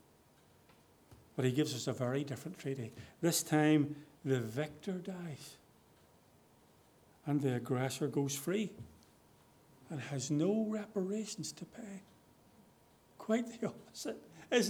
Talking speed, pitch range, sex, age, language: 115 wpm, 140-170 Hz, male, 50-69, English